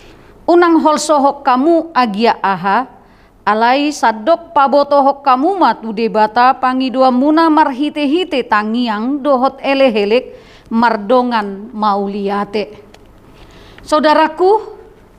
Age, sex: 40-59, female